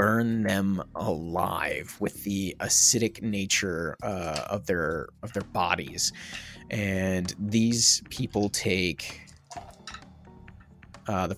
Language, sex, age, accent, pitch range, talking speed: English, male, 30-49, American, 95-125 Hz, 100 wpm